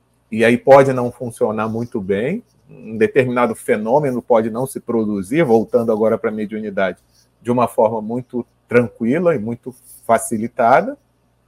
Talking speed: 140 wpm